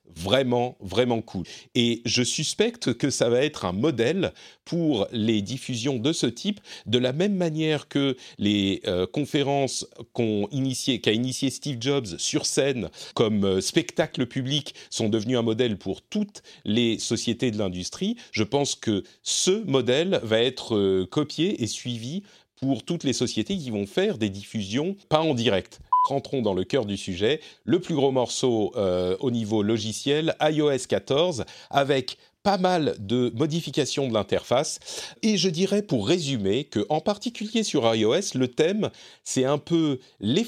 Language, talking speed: French, 160 wpm